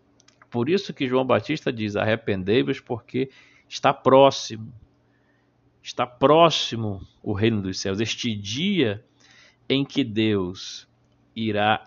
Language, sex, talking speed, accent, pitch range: Portuguese, male, 110 wpm, Brazilian, 110-140 Hz